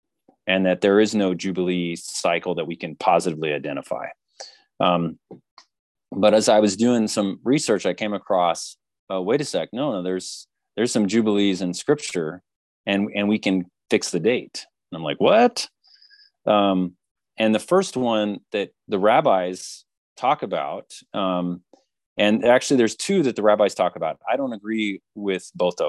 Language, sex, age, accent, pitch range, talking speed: English, male, 30-49, American, 95-110 Hz, 165 wpm